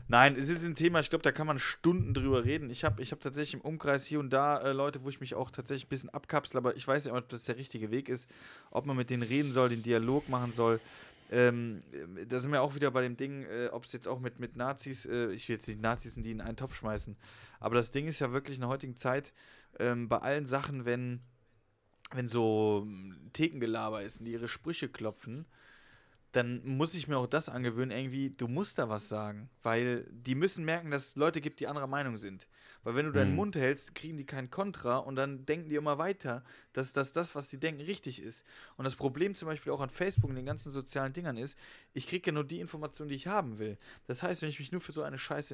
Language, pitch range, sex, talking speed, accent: German, 120-150 Hz, male, 250 wpm, German